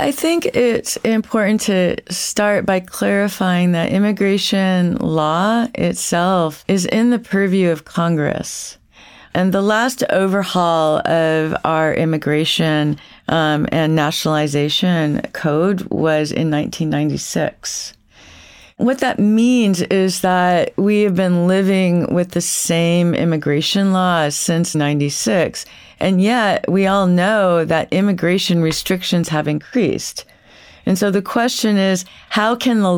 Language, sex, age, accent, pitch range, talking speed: English, female, 40-59, American, 165-200 Hz, 120 wpm